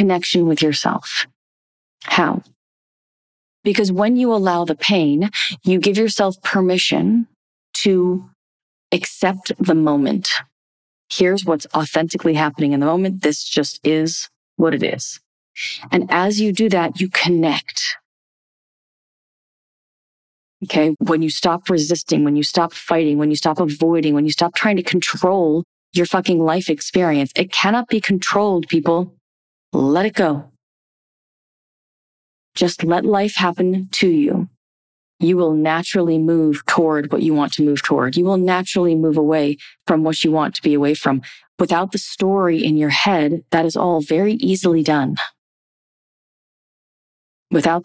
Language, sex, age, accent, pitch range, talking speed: English, female, 40-59, American, 155-190 Hz, 140 wpm